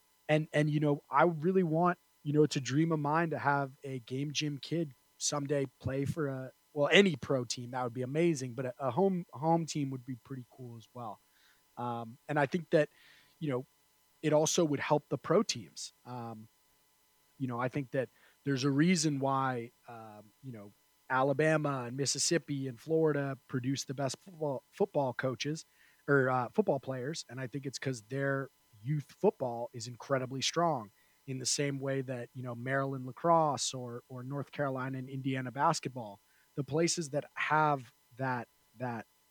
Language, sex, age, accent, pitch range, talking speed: English, male, 30-49, American, 125-145 Hz, 180 wpm